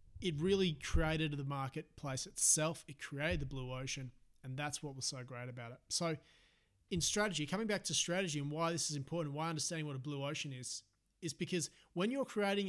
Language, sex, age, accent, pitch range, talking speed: English, male, 30-49, Australian, 130-180 Hz, 205 wpm